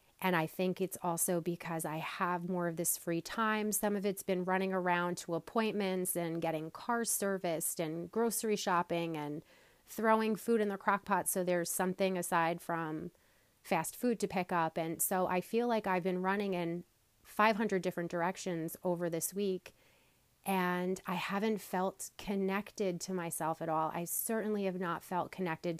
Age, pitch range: 30-49, 170-200 Hz